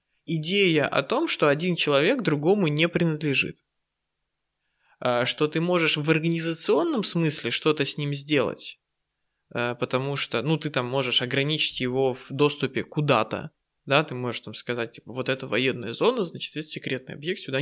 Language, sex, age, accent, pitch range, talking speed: Russian, male, 20-39, native, 130-175 Hz, 155 wpm